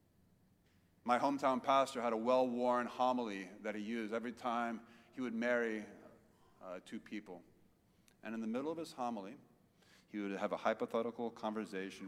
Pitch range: 100-130 Hz